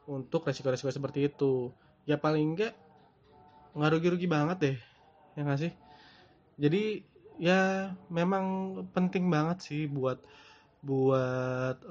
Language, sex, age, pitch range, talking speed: Indonesian, male, 20-39, 135-155 Hz, 105 wpm